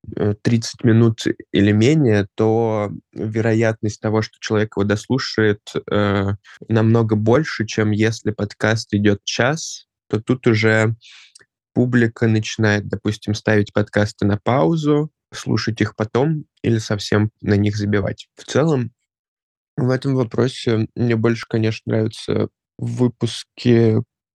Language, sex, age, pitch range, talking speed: Russian, male, 20-39, 105-115 Hz, 115 wpm